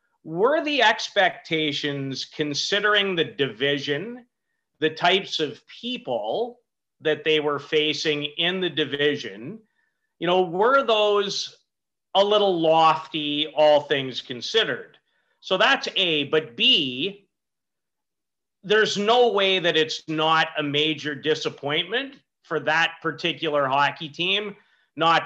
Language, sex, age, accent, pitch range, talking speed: English, male, 40-59, American, 145-175 Hz, 110 wpm